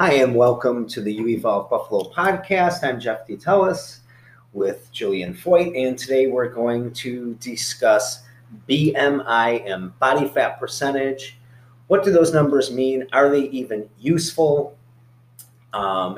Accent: American